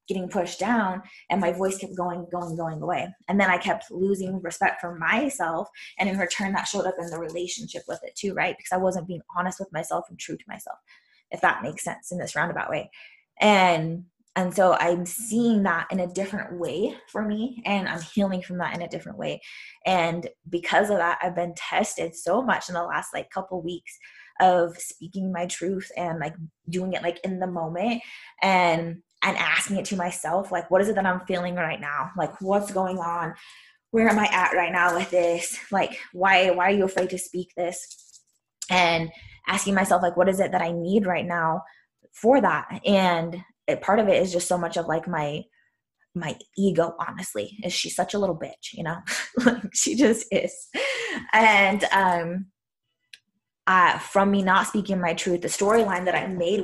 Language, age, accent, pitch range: English, 20-39, American, 175-195 Hz